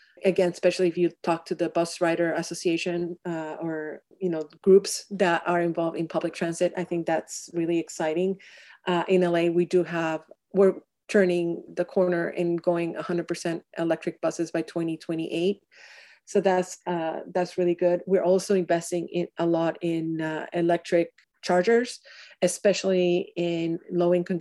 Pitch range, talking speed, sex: 170-185 Hz, 150 wpm, female